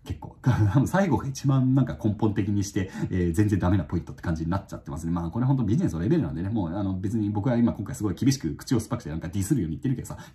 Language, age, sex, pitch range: Japanese, 30-49, male, 90-140 Hz